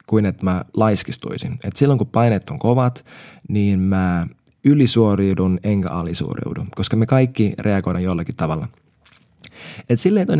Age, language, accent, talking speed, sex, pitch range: 20-39, Finnish, native, 135 wpm, male, 95-120 Hz